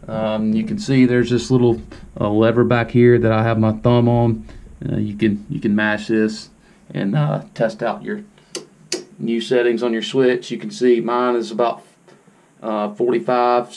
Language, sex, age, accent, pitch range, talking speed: English, male, 30-49, American, 115-150 Hz, 185 wpm